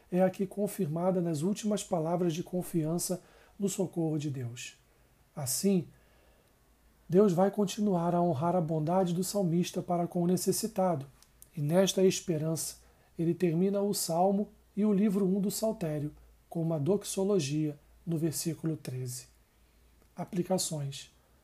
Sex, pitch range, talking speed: male, 145-185 Hz, 130 wpm